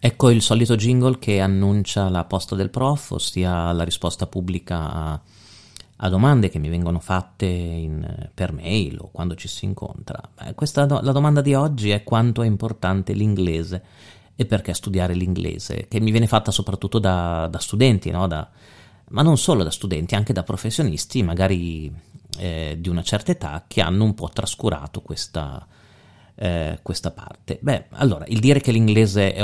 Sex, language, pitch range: male, Italian, 90-120 Hz